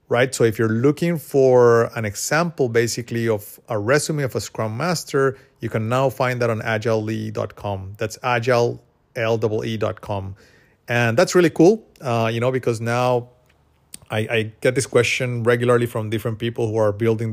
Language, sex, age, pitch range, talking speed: English, male, 30-49, 110-130 Hz, 160 wpm